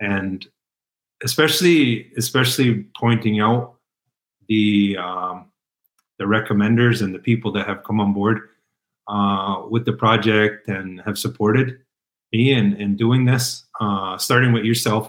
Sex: male